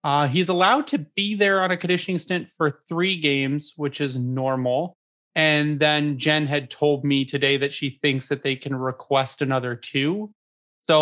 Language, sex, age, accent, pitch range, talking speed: English, male, 20-39, American, 130-165 Hz, 180 wpm